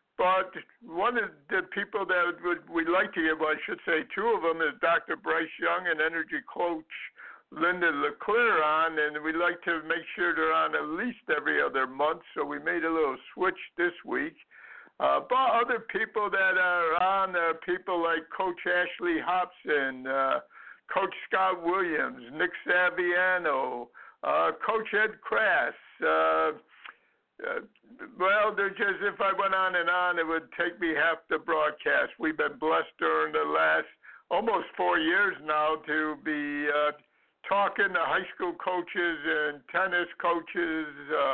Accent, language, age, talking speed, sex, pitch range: American, English, 60-79, 160 wpm, male, 160-205 Hz